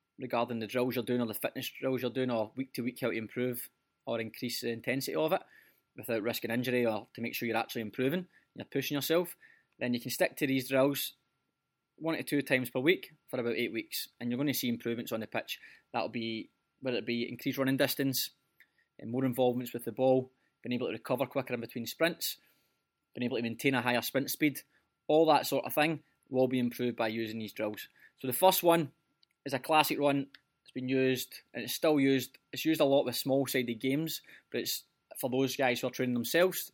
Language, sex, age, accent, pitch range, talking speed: English, male, 20-39, British, 120-140 Hz, 220 wpm